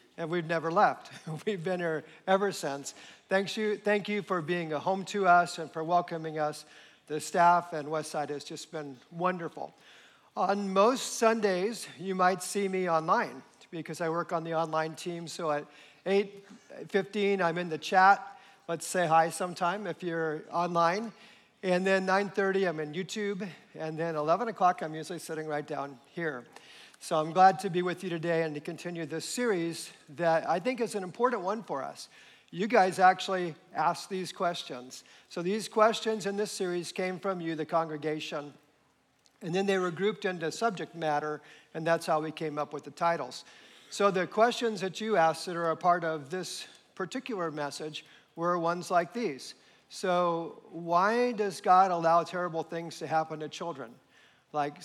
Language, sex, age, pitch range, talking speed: English, male, 50-69, 160-195 Hz, 175 wpm